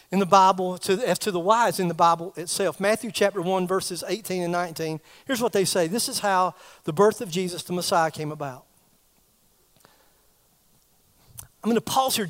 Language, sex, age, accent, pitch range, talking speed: English, male, 40-59, American, 160-210 Hz, 180 wpm